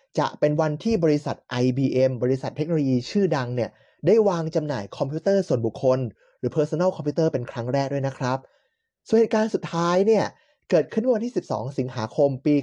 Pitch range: 130-185 Hz